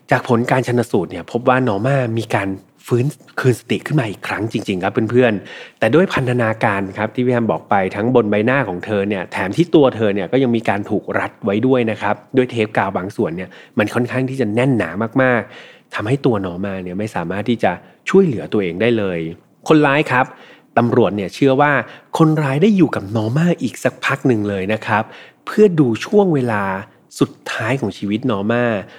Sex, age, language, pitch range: male, 30-49, Thai, 105-130 Hz